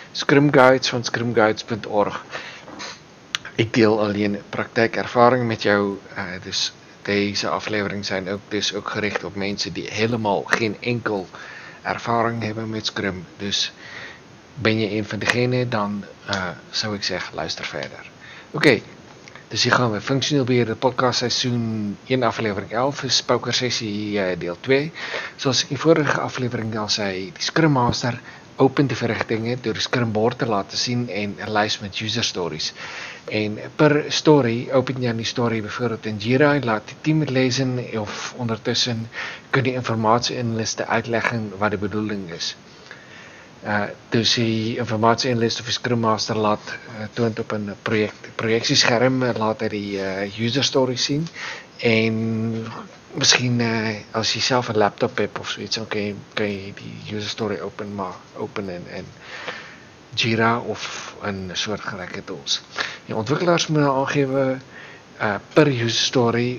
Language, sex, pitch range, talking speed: Dutch, male, 105-125 Hz, 150 wpm